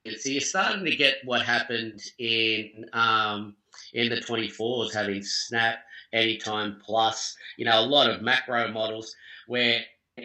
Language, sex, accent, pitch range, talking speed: English, male, Australian, 110-125 Hz, 145 wpm